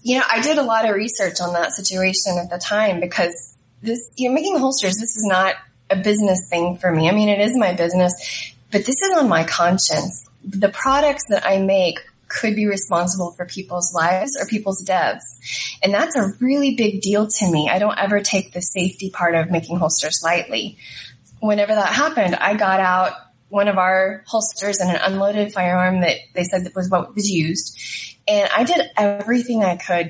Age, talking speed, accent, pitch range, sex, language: 20-39, 200 wpm, American, 175-205 Hz, female, English